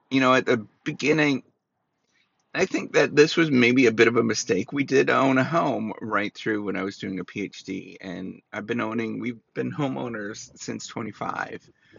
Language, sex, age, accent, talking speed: English, male, 30-49, American, 190 wpm